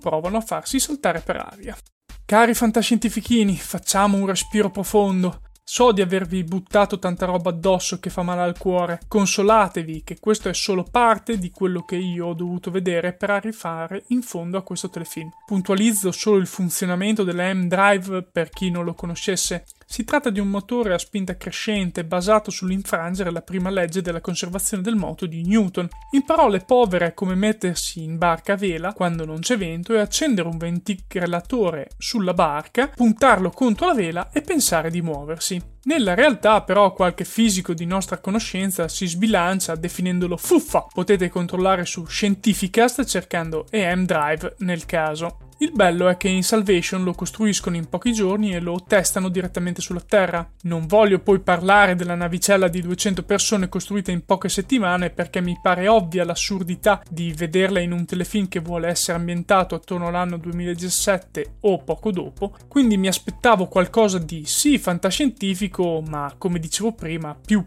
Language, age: Italian, 20-39